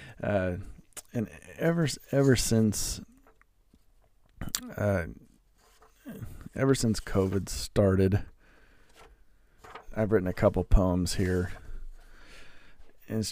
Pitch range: 90-100 Hz